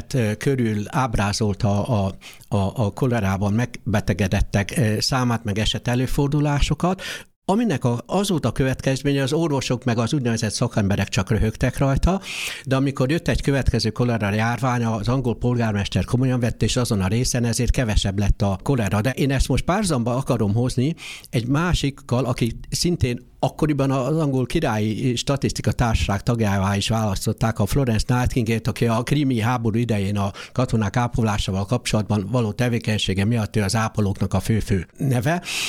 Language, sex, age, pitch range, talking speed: Hungarian, male, 60-79, 105-130 Hz, 145 wpm